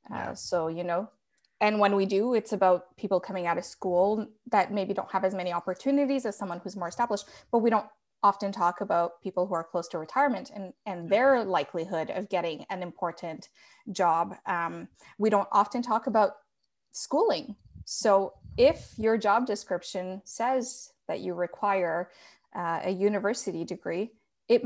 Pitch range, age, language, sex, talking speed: 180-215 Hz, 20-39, English, female, 170 wpm